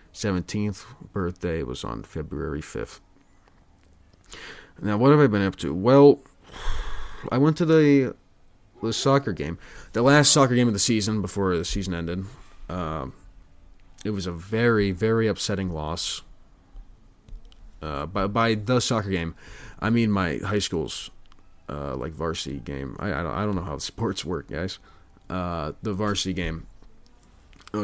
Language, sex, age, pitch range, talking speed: English, male, 30-49, 85-110 Hz, 150 wpm